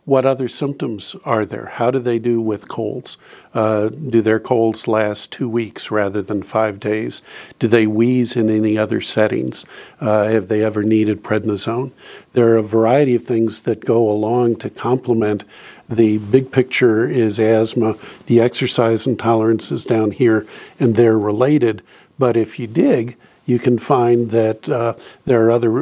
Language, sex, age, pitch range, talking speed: English, male, 50-69, 110-125 Hz, 165 wpm